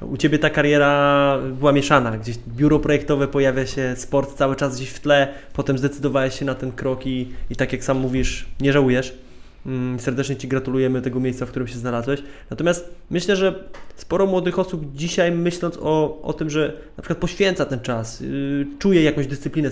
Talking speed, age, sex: 190 wpm, 20-39, male